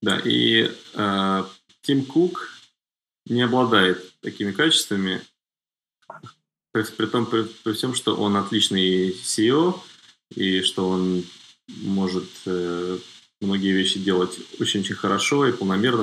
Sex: male